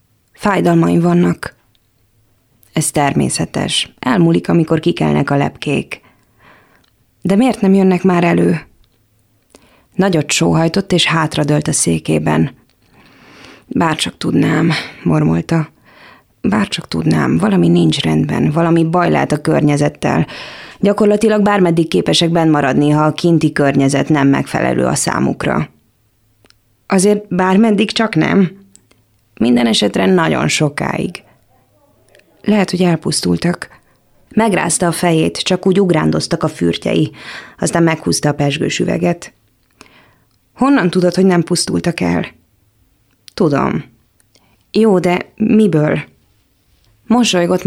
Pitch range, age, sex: 110-180 Hz, 20-39, female